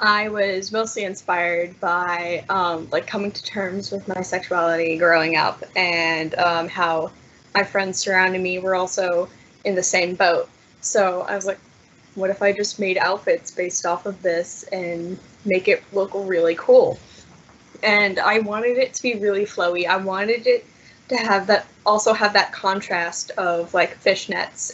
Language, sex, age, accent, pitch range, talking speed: English, female, 10-29, American, 180-200 Hz, 165 wpm